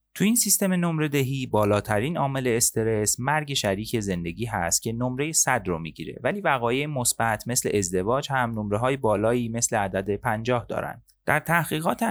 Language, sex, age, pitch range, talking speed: Persian, male, 30-49, 100-135 Hz, 155 wpm